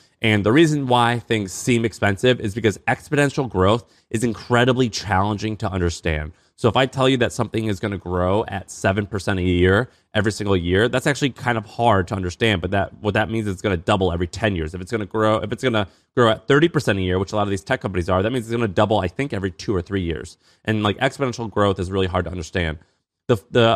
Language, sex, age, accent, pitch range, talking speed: English, male, 30-49, American, 95-115 Hz, 260 wpm